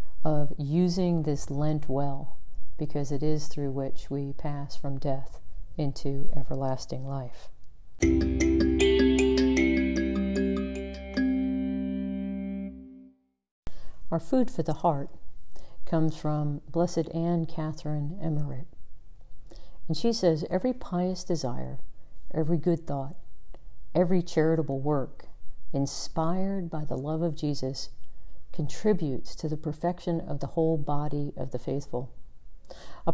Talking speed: 105 wpm